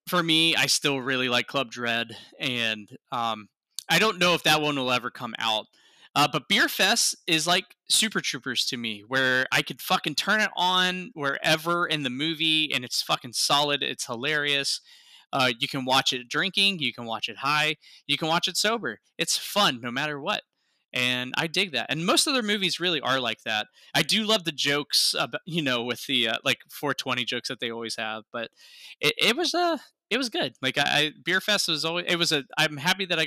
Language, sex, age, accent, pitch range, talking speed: English, male, 10-29, American, 125-170 Hz, 220 wpm